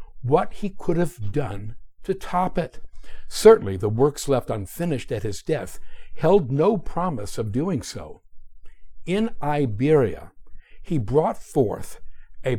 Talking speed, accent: 135 wpm, American